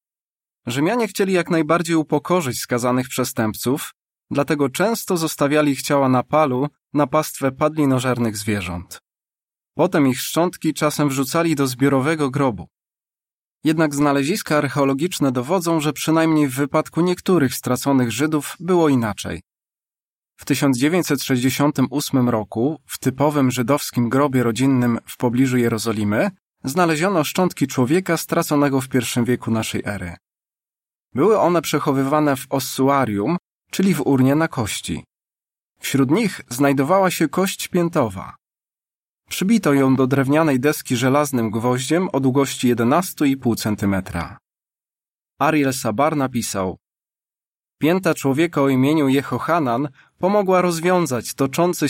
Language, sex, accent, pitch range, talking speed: Polish, male, native, 125-160 Hz, 110 wpm